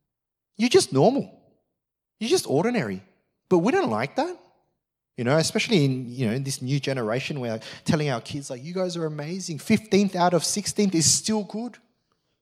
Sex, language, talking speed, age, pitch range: male, English, 185 wpm, 30-49, 130-200 Hz